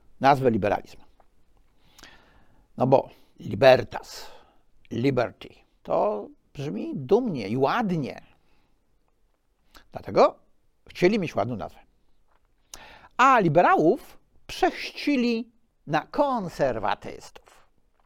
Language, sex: Polish, male